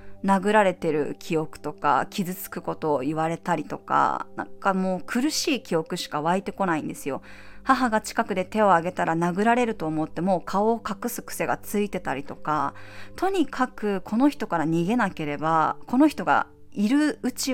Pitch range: 170-265 Hz